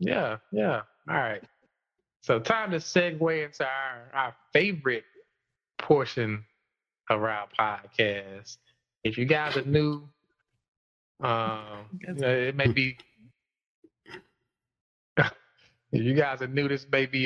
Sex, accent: male, American